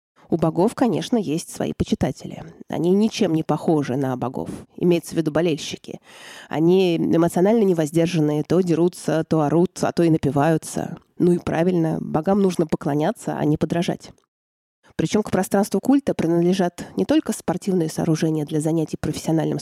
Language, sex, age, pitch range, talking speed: Russian, female, 20-39, 155-190 Hz, 145 wpm